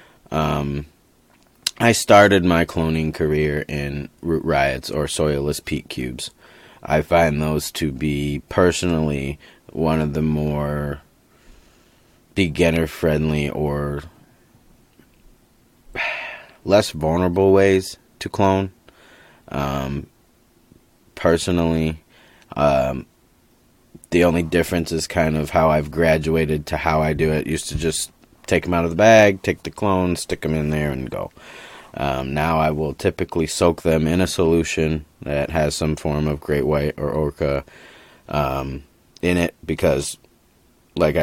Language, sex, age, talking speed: English, male, 20-39, 130 wpm